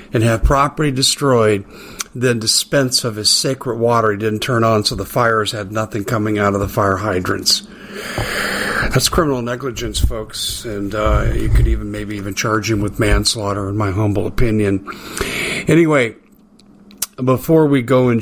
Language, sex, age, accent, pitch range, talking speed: English, male, 50-69, American, 105-125 Hz, 160 wpm